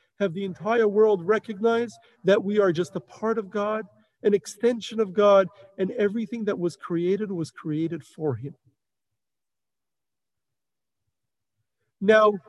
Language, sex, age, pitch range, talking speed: English, male, 40-59, 175-225 Hz, 130 wpm